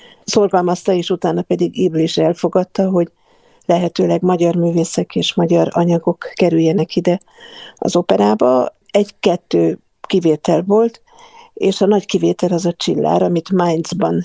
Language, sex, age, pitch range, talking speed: Hungarian, female, 50-69, 165-200 Hz, 120 wpm